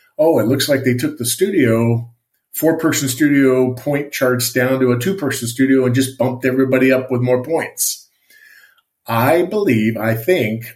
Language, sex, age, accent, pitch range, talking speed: English, male, 50-69, American, 115-135 Hz, 160 wpm